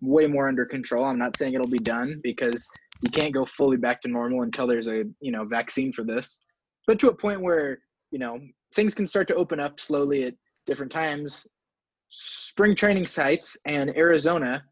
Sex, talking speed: male, 195 wpm